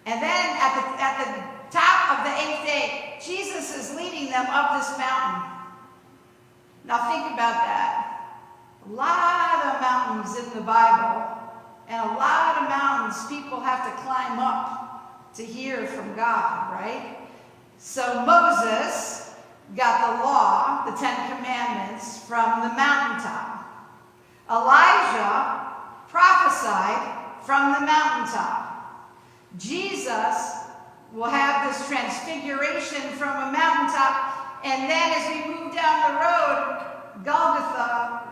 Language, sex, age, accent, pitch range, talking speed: English, female, 50-69, American, 230-295 Hz, 120 wpm